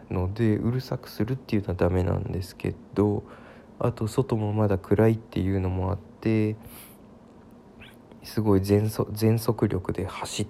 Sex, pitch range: male, 105-130 Hz